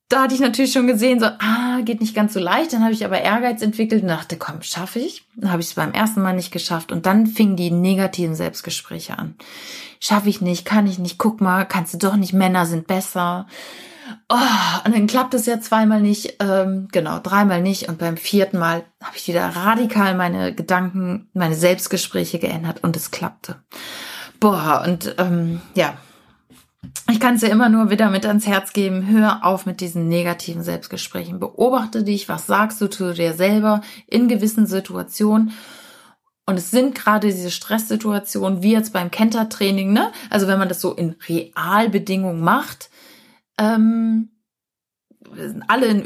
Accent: German